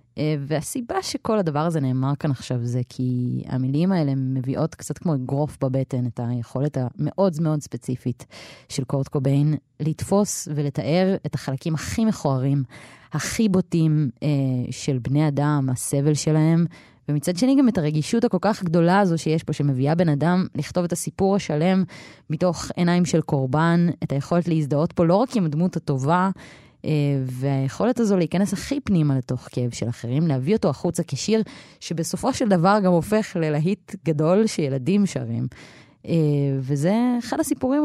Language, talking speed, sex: Hebrew, 150 wpm, female